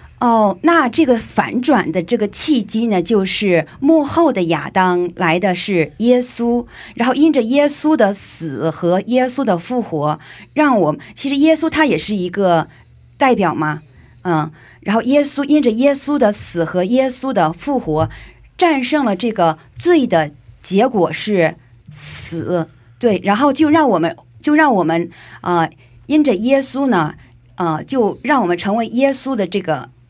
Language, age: Korean, 50-69